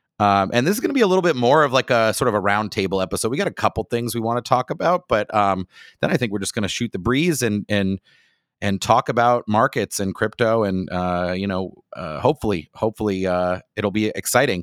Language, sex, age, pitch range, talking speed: English, male, 30-49, 100-125 Hz, 245 wpm